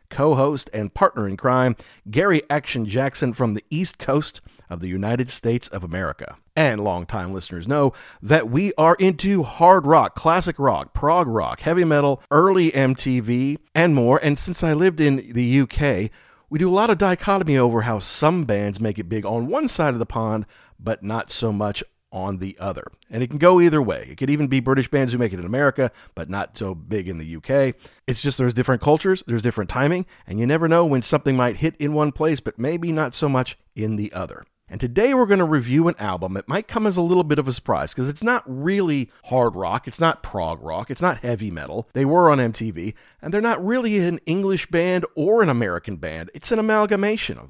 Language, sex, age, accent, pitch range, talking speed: English, male, 40-59, American, 110-165 Hz, 220 wpm